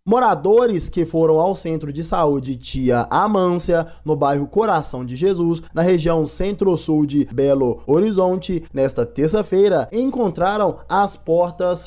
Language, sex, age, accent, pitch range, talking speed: Portuguese, male, 20-39, Brazilian, 155-195 Hz, 125 wpm